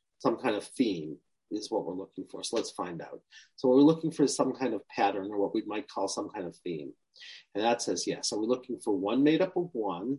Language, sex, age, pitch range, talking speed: English, male, 40-59, 105-145 Hz, 265 wpm